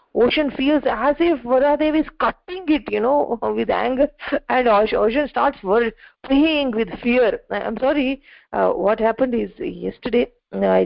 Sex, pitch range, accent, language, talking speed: female, 205-260 Hz, Indian, English, 145 wpm